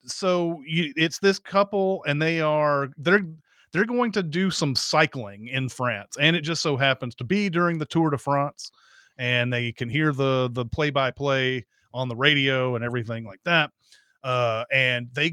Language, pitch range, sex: English, 125-160 Hz, male